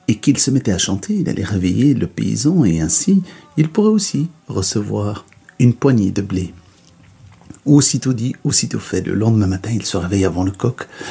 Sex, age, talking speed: male, 60-79, 185 wpm